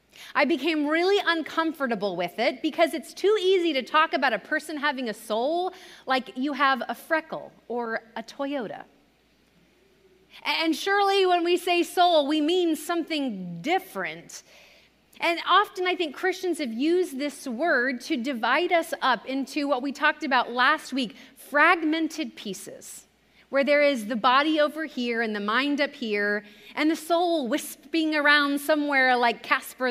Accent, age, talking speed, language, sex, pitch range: American, 30-49, 155 wpm, English, female, 245-325 Hz